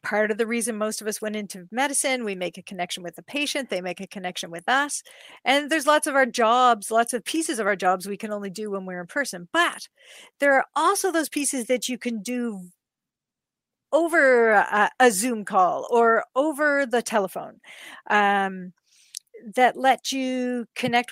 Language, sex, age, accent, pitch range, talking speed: English, female, 40-59, American, 210-270 Hz, 190 wpm